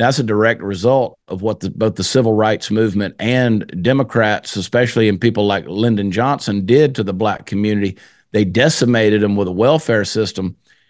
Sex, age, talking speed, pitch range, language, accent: male, 50-69, 175 wpm, 100-125 Hz, English, American